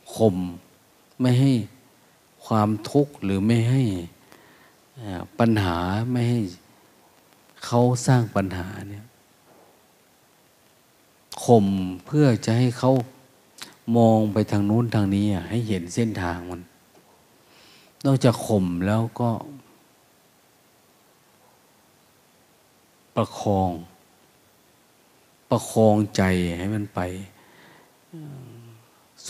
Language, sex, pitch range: Thai, male, 95-125 Hz